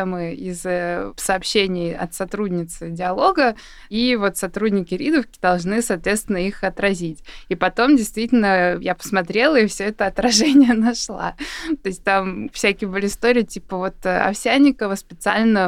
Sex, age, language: female, 20-39, Russian